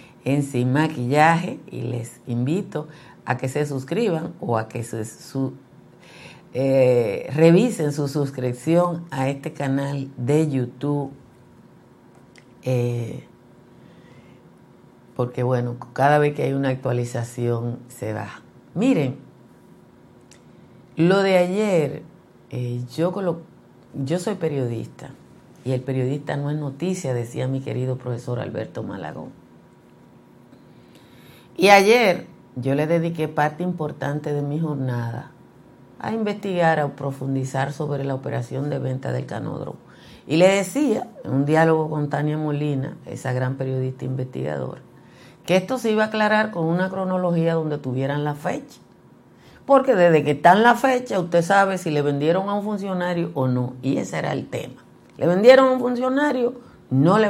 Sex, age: female, 50-69